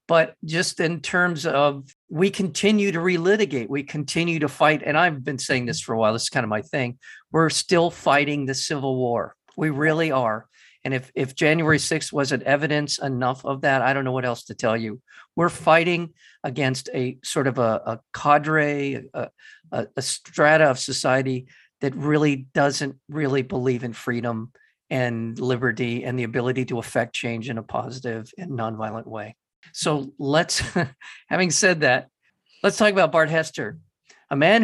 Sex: male